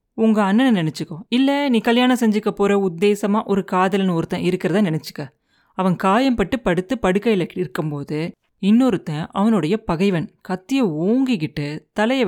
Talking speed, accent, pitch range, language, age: 120 wpm, native, 170-225 Hz, Tamil, 30-49